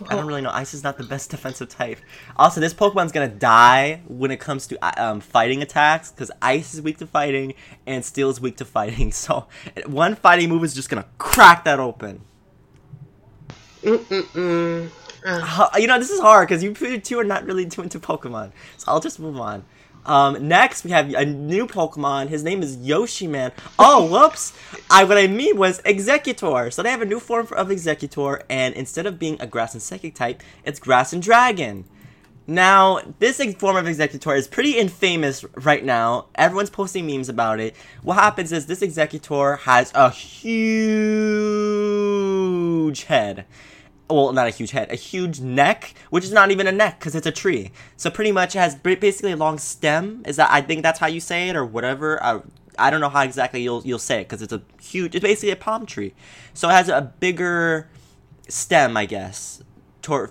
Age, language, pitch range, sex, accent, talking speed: 20-39, English, 135-190 Hz, male, American, 200 wpm